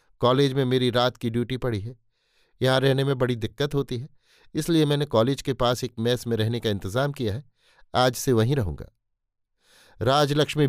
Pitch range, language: 110-140 Hz, Hindi